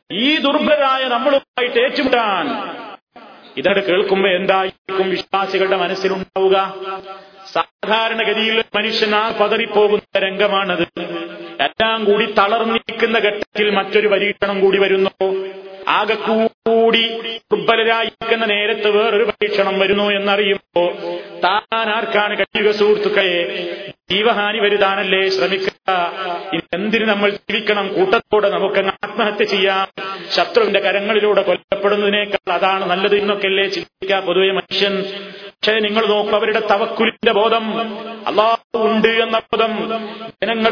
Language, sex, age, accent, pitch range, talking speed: Malayalam, male, 30-49, native, 195-225 Hz, 85 wpm